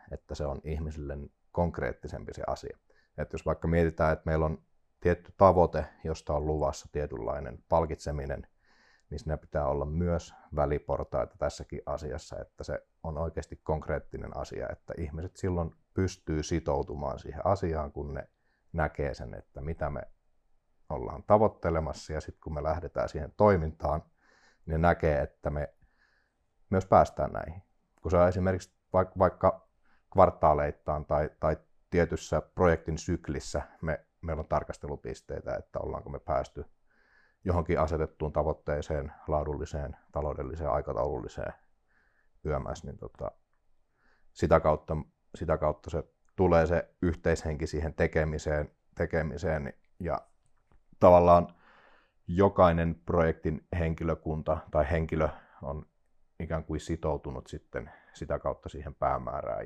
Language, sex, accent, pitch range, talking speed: Finnish, male, native, 75-85 Hz, 120 wpm